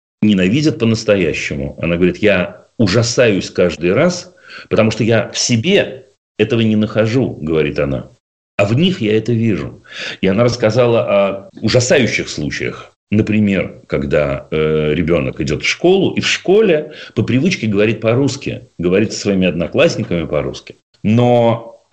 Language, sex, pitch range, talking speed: Russian, male, 90-115 Hz, 135 wpm